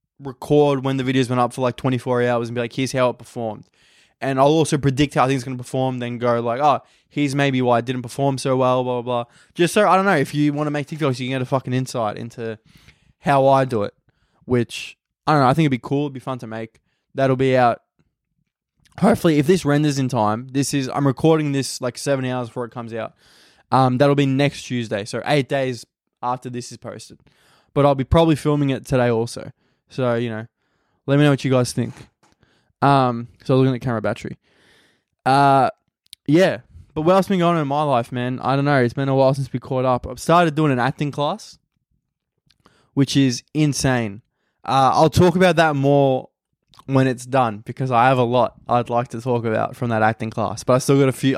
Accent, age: Australian, 20-39